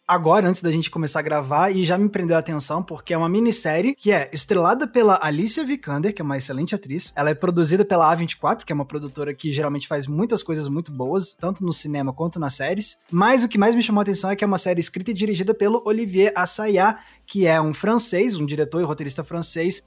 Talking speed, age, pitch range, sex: 235 wpm, 20-39, 155-195 Hz, male